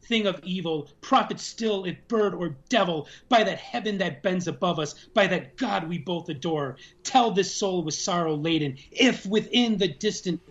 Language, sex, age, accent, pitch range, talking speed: English, male, 30-49, American, 145-195 Hz, 185 wpm